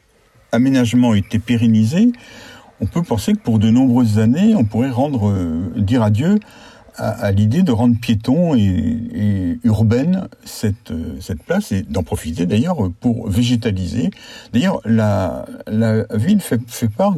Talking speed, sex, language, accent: 150 wpm, male, French, French